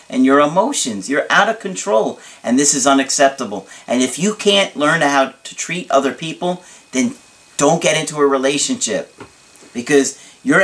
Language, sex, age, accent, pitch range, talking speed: English, male, 40-59, American, 125-165 Hz, 165 wpm